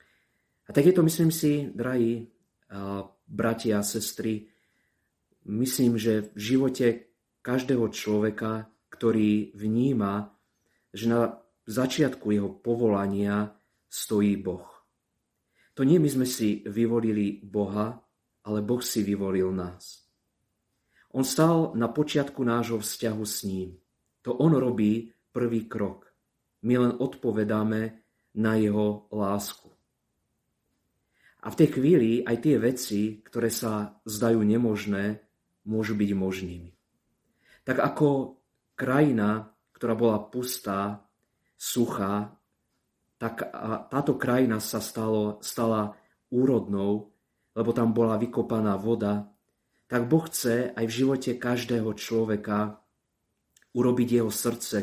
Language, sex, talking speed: Slovak, male, 105 wpm